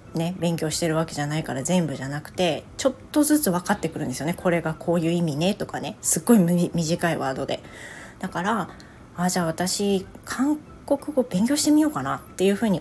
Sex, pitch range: female, 160-225 Hz